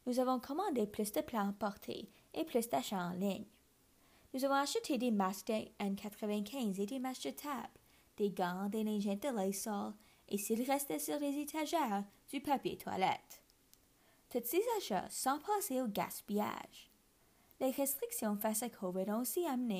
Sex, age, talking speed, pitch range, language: female, 20-39, 165 wpm, 200-275 Hz, French